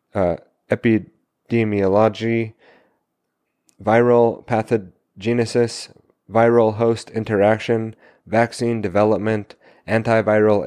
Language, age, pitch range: English, 30-49, 95-110 Hz